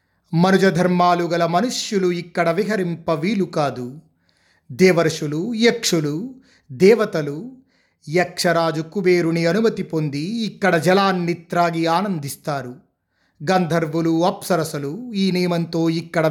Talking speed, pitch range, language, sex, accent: 85 wpm, 150-190 Hz, Telugu, male, native